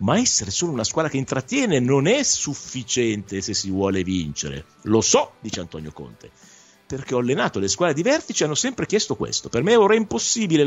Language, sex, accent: Italian, male, native